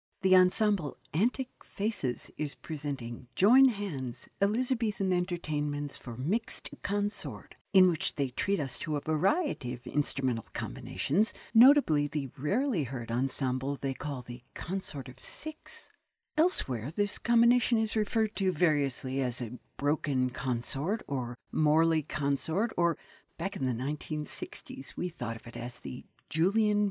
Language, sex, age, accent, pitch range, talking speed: English, female, 60-79, American, 140-200 Hz, 135 wpm